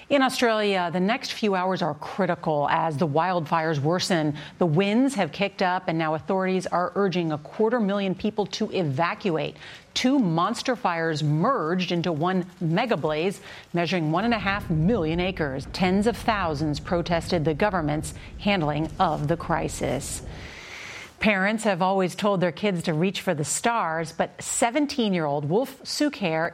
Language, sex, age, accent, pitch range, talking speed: English, female, 40-59, American, 165-205 Hz, 155 wpm